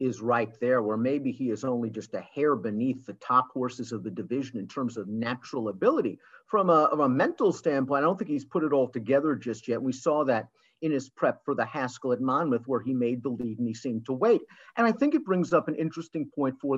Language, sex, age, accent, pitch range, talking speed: English, male, 50-69, American, 130-185 Hz, 250 wpm